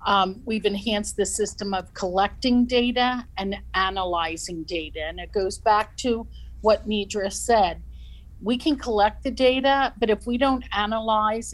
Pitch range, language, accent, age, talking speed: 185-220 Hz, English, American, 50-69, 150 wpm